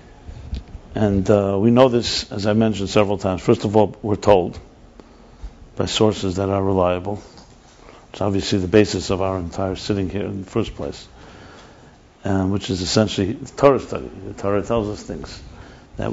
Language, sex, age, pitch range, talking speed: English, male, 60-79, 95-115 Hz, 170 wpm